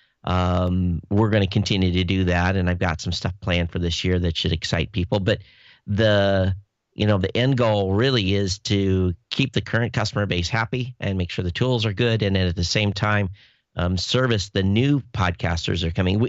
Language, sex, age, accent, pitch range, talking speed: English, male, 50-69, American, 95-120 Hz, 205 wpm